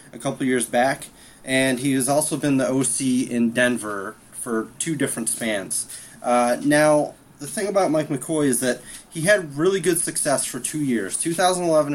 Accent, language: American, English